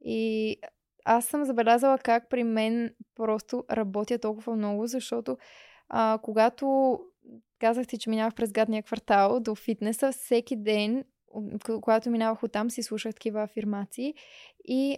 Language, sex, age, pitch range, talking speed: Bulgarian, female, 20-39, 220-245 Hz, 130 wpm